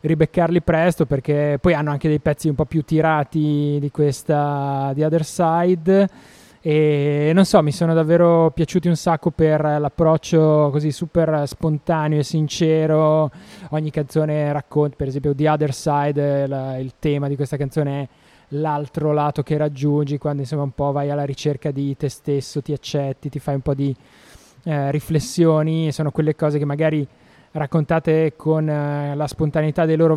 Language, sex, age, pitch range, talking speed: Italian, male, 20-39, 145-160 Hz, 160 wpm